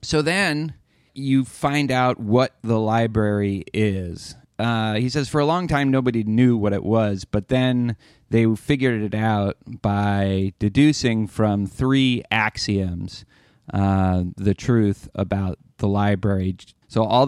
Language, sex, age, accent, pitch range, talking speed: English, male, 30-49, American, 100-130 Hz, 140 wpm